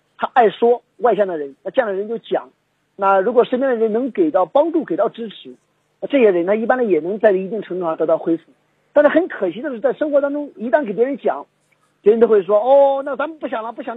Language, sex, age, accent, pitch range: Chinese, male, 50-69, native, 175-235 Hz